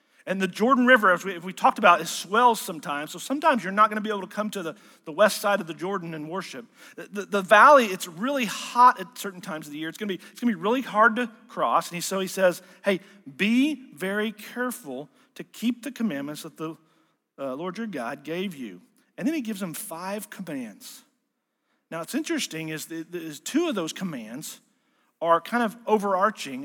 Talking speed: 220 wpm